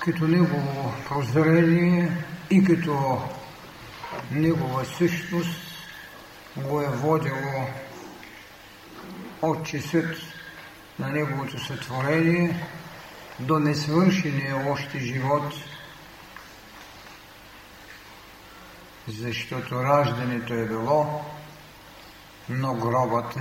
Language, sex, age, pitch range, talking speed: Bulgarian, male, 60-79, 130-160 Hz, 60 wpm